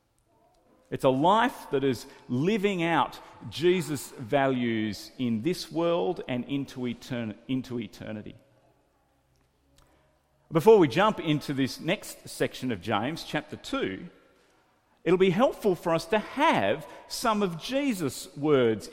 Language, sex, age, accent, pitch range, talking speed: English, male, 40-59, Australian, 120-180 Hz, 115 wpm